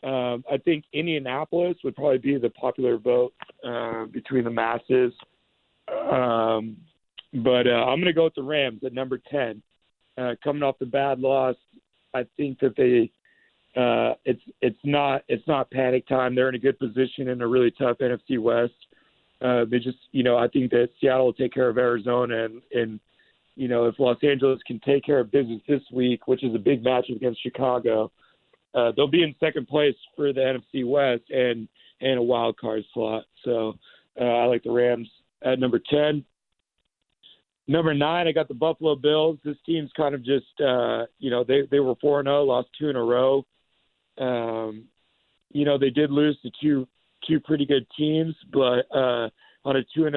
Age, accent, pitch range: 40-59, American, 120-145 Hz